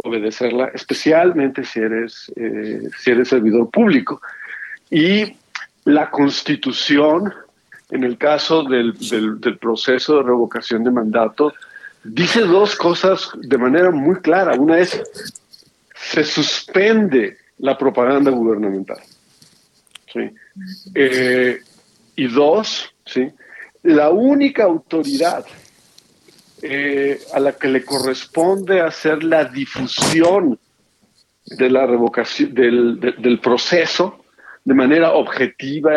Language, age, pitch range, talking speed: Spanish, 50-69, 120-170 Hz, 105 wpm